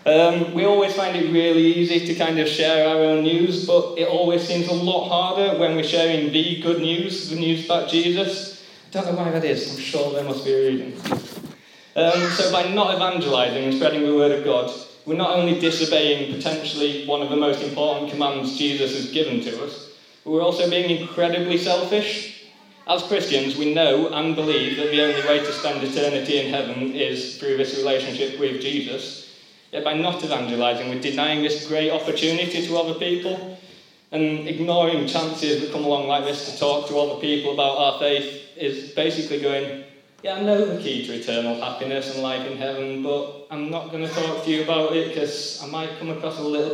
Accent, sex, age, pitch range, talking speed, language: British, male, 20-39, 145-170 Hz, 205 wpm, English